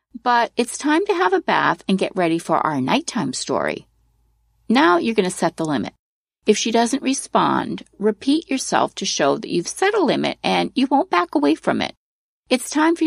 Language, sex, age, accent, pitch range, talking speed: English, female, 40-59, American, 185-275 Hz, 200 wpm